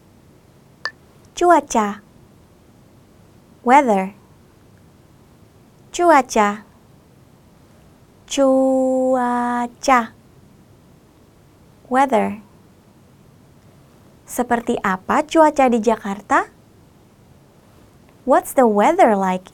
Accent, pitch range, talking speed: American, 200-260 Hz, 45 wpm